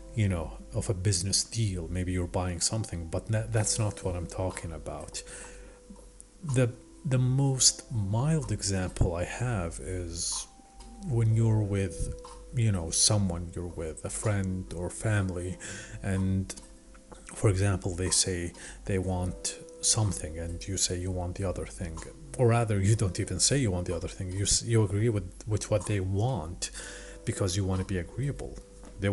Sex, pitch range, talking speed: male, 90-110 Hz, 165 wpm